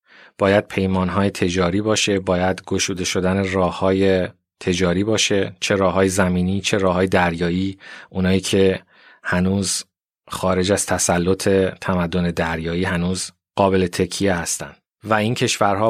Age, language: 30-49, Persian